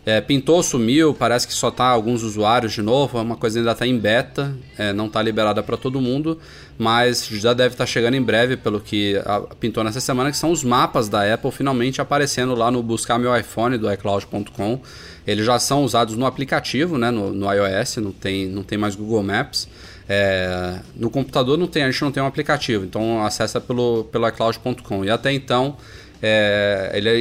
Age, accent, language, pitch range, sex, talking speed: 20-39, Brazilian, Portuguese, 105-130 Hz, male, 185 wpm